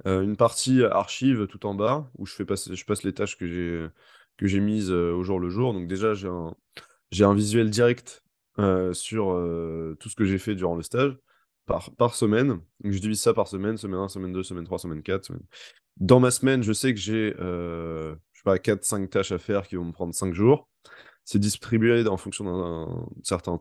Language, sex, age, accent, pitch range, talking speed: French, male, 20-39, French, 90-115 Hz, 205 wpm